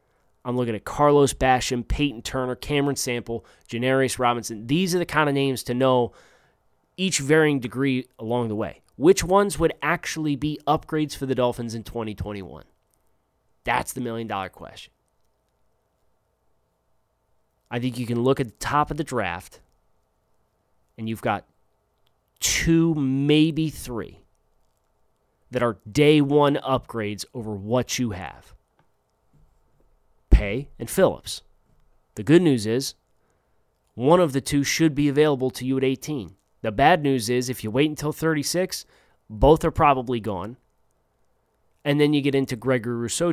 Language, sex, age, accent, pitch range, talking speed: English, male, 30-49, American, 115-145 Hz, 145 wpm